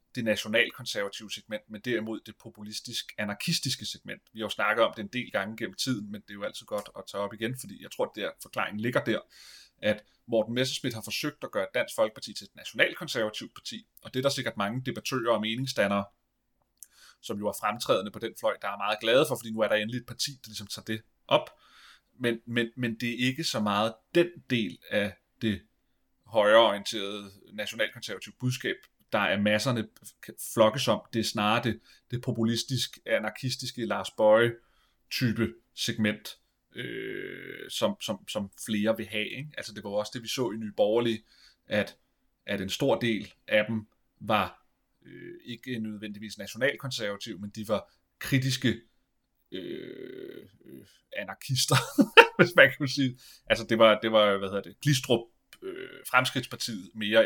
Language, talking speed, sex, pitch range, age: Danish, 175 wpm, male, 105-130 Hz, 30-49